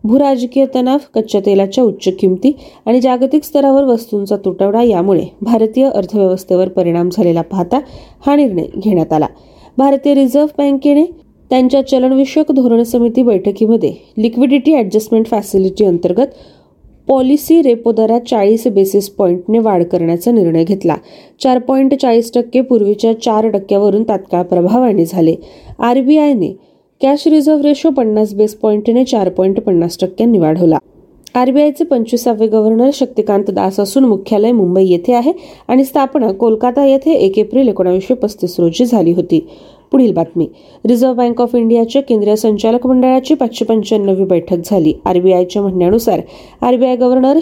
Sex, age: female, 30-49